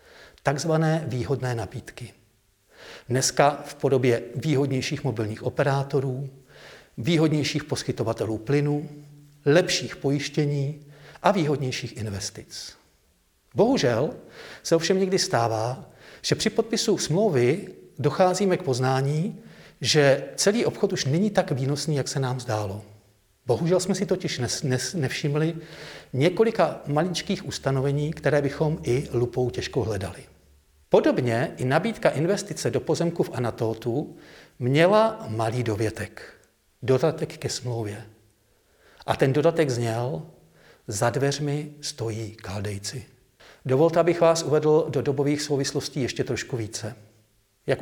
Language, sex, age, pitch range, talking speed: Czech, male, 50-69, 120-155 Hz, 110 wpm